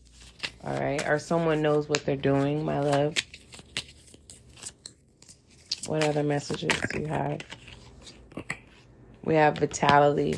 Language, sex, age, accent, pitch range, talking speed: English, female, 30-49, American, 135-155 Hz, 110 wpm